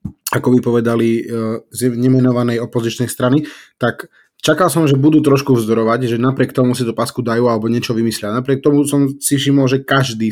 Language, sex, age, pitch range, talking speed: Slovak, male, 20-39, 115-130 Hz, 180 wpm